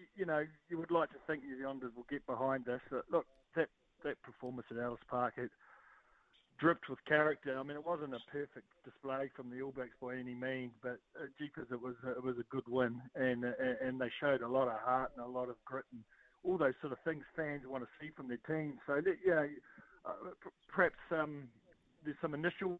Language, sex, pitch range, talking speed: English, male, 125-155 Hz, 225 wpm